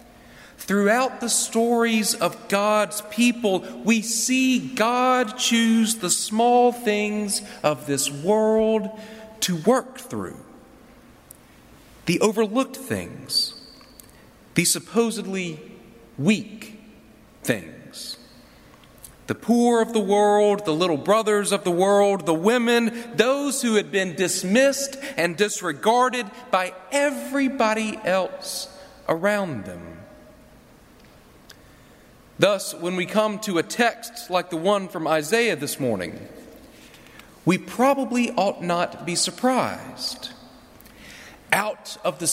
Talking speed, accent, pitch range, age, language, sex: 105 wpm, American, 190-245 Hz, 40-59, English, male